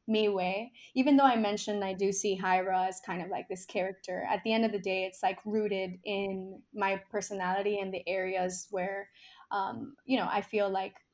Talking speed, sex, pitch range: 205 wpm, female, 190-220 Hz